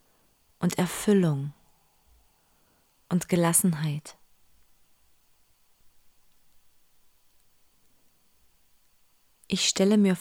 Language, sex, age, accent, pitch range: German, female, 20-39, German, 155-195 Hz